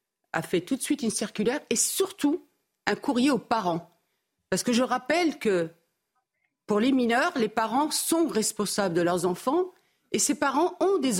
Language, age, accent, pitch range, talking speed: French, 50-69, French, 190-280 Hz, 175 wpm